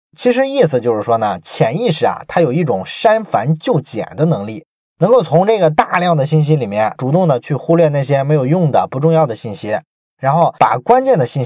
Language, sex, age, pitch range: Chinese, male, 20-39, 135-185 Hz